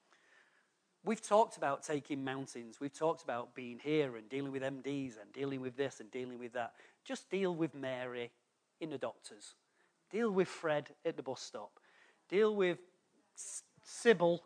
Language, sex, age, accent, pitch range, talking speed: English, male, 40-59, British, 140-185 Hz, 160 wpm